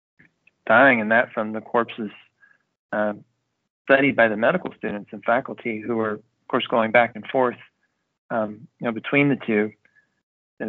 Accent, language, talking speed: American, English, 165 wpm